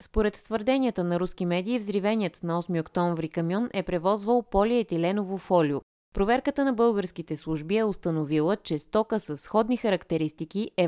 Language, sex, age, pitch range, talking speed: Bulgarian, female, 20-39, 165-215 Hz, 145 wpm